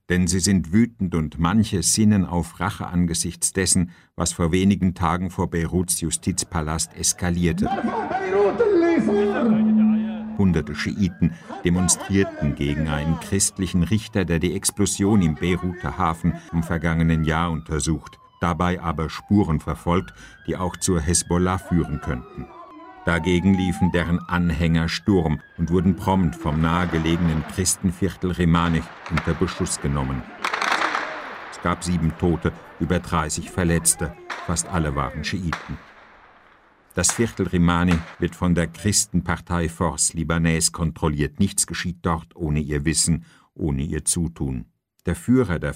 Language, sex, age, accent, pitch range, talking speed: German, male, 50-69, German, 80-95 Hz, 125 wpm